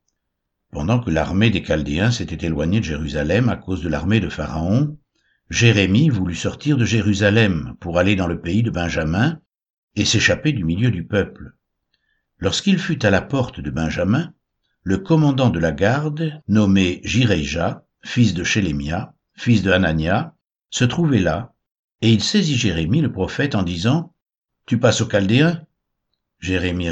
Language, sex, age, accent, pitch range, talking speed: French, male, 60-79, French, 90-120 Hz, 155 wpm